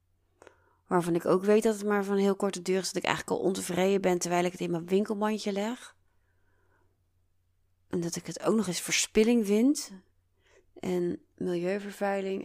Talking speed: 175 wpm